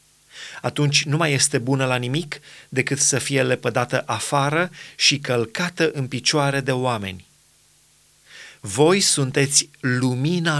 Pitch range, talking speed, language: 130-155 Hz, 120 wpm, Romanian